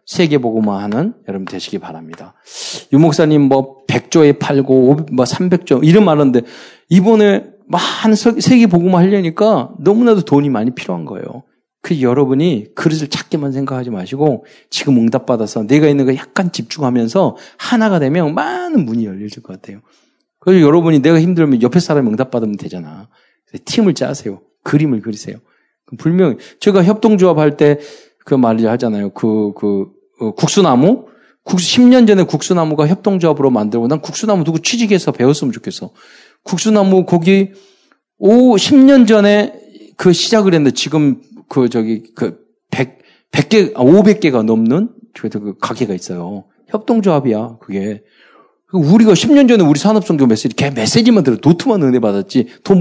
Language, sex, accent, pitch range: Korean, male, native, 130-205 Hz